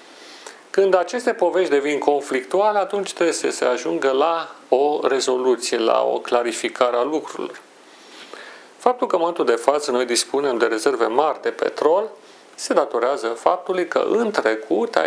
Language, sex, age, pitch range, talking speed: Romanian, male, 40-59, 120-195 Hz, 150 wpm